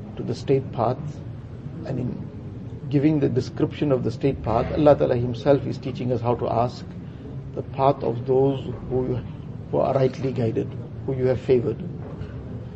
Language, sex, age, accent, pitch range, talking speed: English, male, 50-69, Indian, 125-140 Hz, 150 wpm